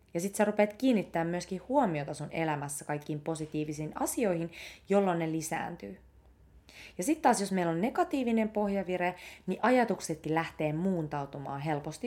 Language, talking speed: English, 140 wpm